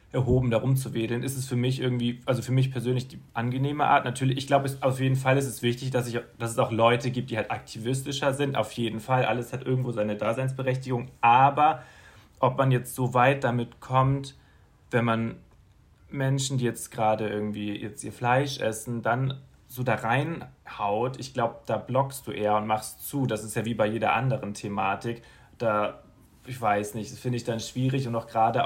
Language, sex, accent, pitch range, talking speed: German, male, German, 110-135 Hz, 200 wpm